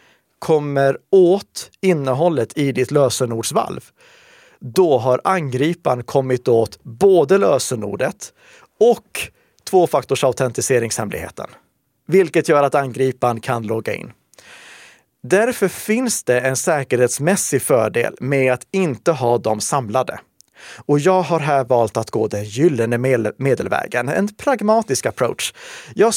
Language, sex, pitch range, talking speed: Swedish, male, 120-175 Hz, 110 wpm